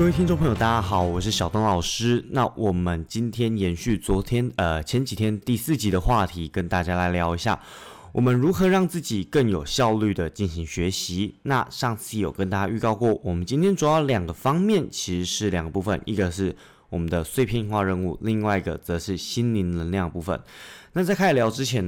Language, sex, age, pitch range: Chinese, male, 20-39, 90-110 Hz